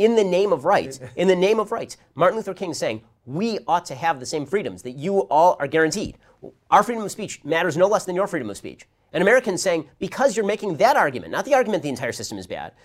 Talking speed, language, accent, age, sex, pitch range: 250 wpm, English, American, 40-59, male, 130-195 Hz